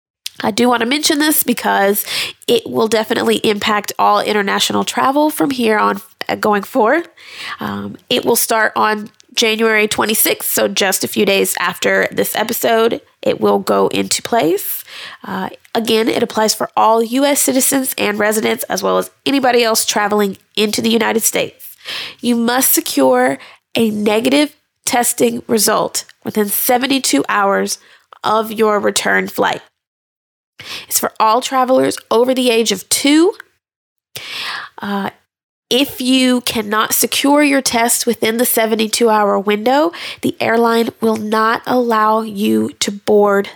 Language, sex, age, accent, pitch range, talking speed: English, female, 20-39, American, 210-255 Hz, 140 wpm